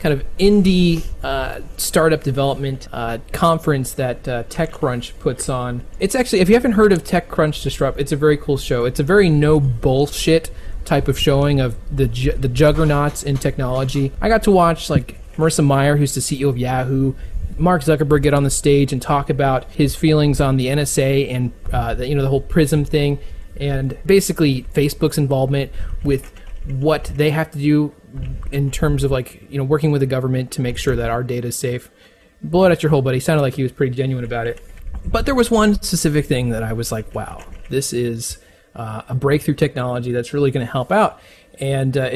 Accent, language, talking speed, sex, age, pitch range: American, English, 205 wpm, male, 20-39, 130-155 Hz